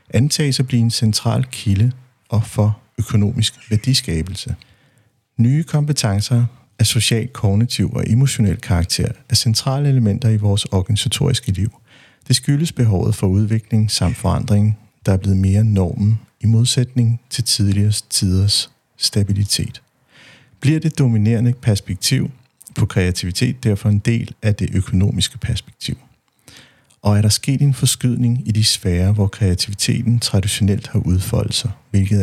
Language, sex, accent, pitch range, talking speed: Danish, male, native, 100-125 Hz, 135 wpm